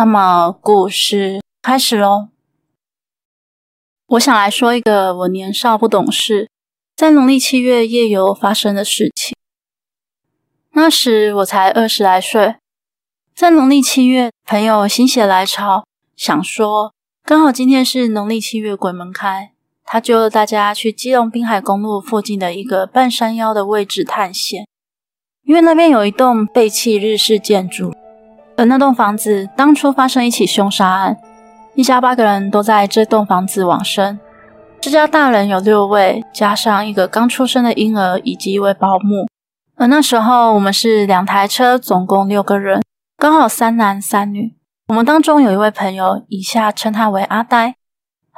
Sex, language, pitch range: female, Chinese, 200-240 Hz